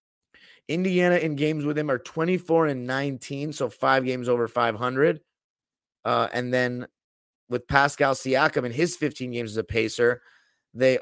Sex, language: male, English